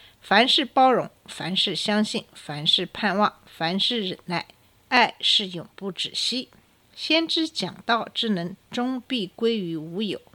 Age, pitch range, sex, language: 50-69, 180-255 Hz, female, Chinese